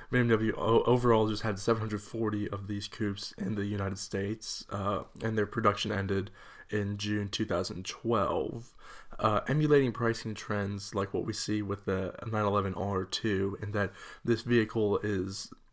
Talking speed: 140 wpm